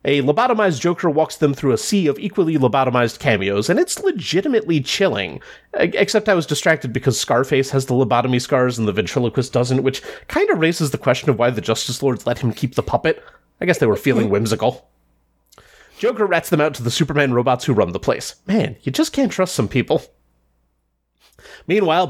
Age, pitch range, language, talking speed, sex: 30-49, 125-180 Hz, English, 195 wpm, male